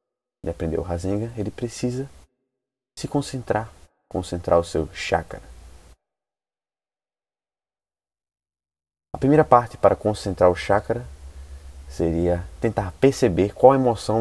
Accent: Brazilian